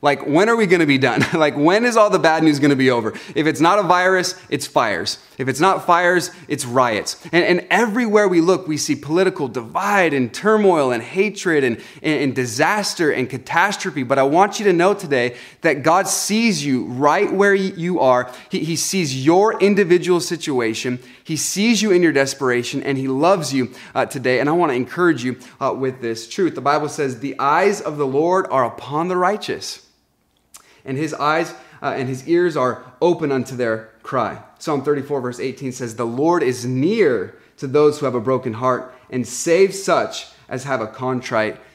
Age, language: 30-49, English